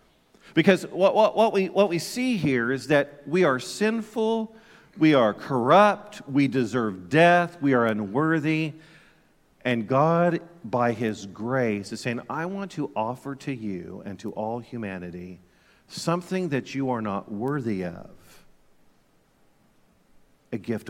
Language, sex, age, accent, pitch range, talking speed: English, male, 50-69, American, 115-175 Hz, 135 wpm